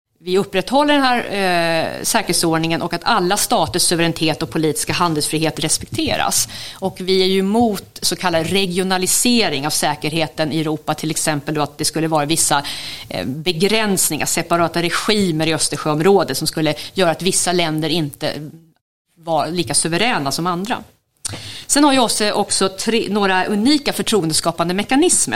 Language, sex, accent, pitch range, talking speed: English, female, Swedish, 160-205 Hz, 135 wpm